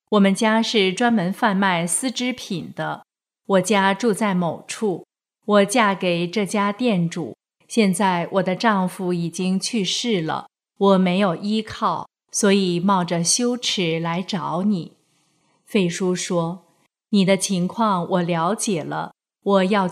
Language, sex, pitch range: Chinese, female, 175-215 Hz